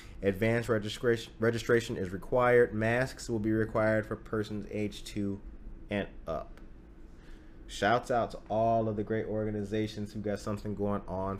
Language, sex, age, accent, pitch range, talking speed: English, male, 30-49, American, 105-130 Hz, 145 wpm